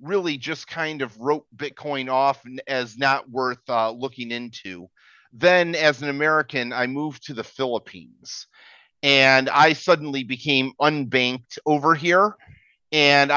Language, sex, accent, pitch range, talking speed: English, male, American, 125-150 Hz, 135 wpm